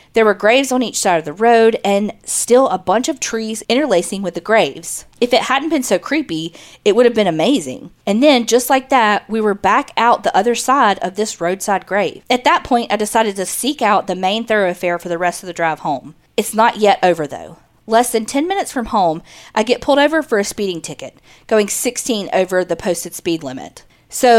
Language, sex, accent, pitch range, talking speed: English, female, American, 180-240 Hz, 225 wpm